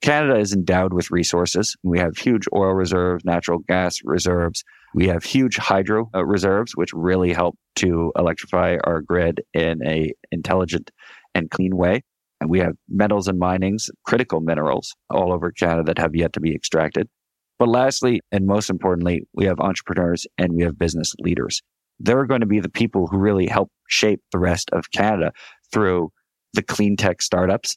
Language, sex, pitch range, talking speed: English, male, 90-105 Hz, 175 wpm